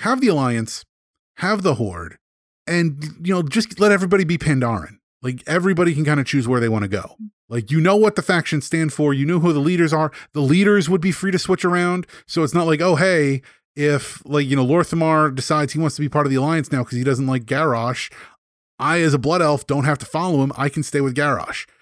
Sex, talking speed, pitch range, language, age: male, 240 wpm, 140-190 Hz, English, 30-49